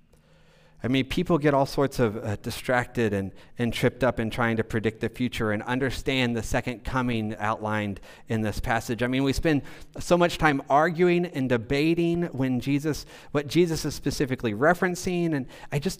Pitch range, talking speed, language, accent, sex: 120-160 Hz, 180 wpm, English, American, male